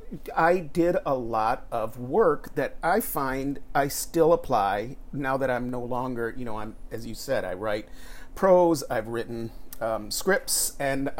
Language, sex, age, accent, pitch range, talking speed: English, male, 40-59, American, 125-160 Hz, 165 wpm